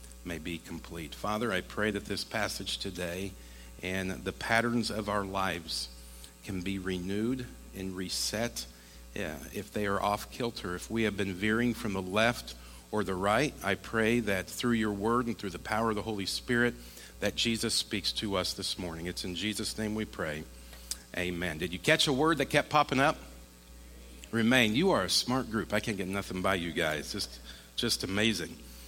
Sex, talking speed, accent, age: male, 190 wpm, American, 50-69